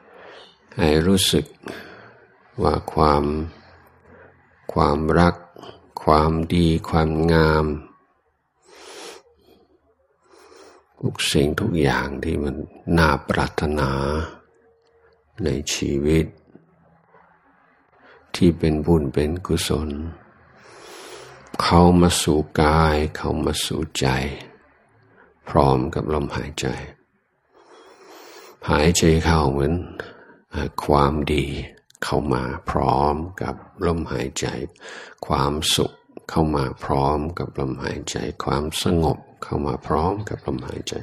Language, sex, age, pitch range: Thai, male, 60-79, 75-85 Hz